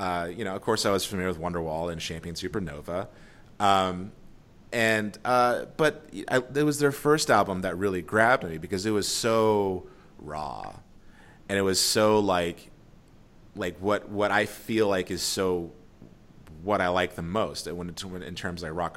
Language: English